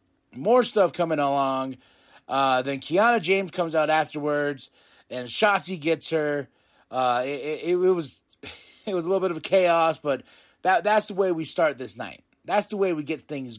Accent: American